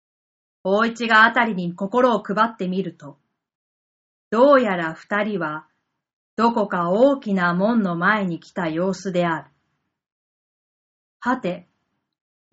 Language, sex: Japanese, female